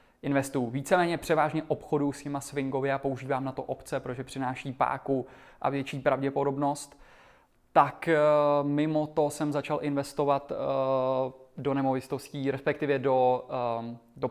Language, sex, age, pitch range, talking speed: Czech, male, 20-39, 130-145 Hz, 120 wpm